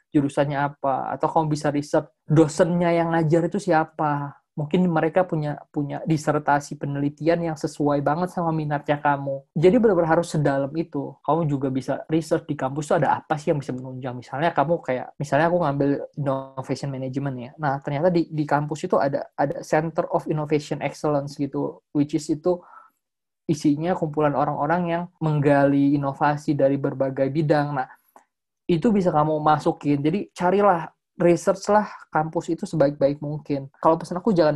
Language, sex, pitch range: Indonesian, male, 140-170 Hz